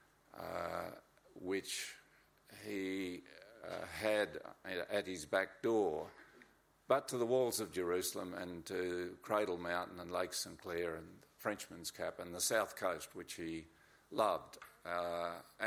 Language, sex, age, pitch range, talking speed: English, male, 50-69, 95-125 Hz, 125 wpm